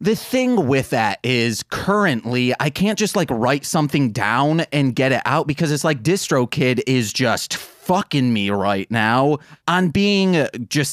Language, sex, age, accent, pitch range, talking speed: English, male, 30-49, American, 125-175 Hz, 170 wpm